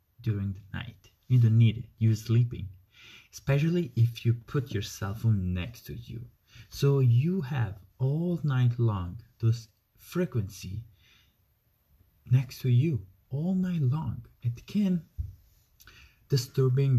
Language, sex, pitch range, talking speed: English, male, 100-125 Hz, 125 wpm